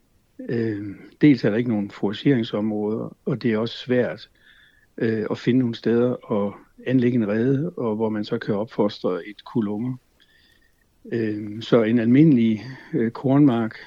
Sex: male